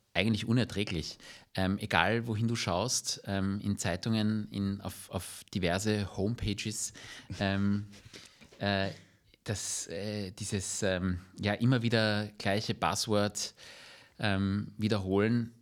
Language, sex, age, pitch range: German, male, 30-49, 95-110 Hz